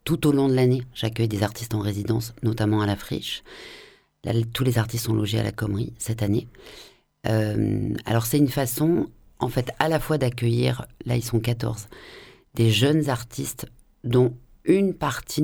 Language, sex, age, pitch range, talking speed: French, female, 40-59, 110-125 Hz, 175 wpm